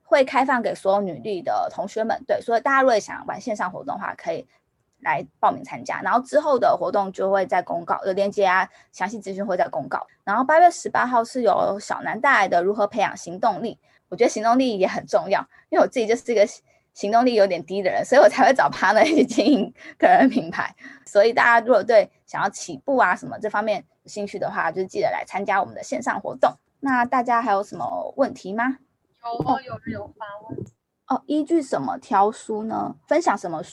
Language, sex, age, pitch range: Chinese, female, 20-39, 200-260 Hz